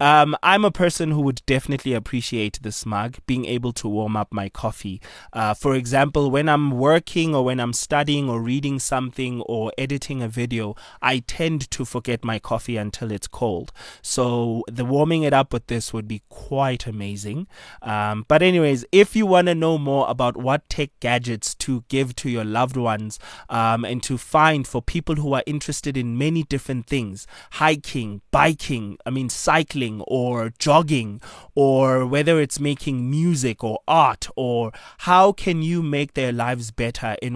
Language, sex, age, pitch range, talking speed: English, male, 20-39, 115-145 Hz, 175 wpm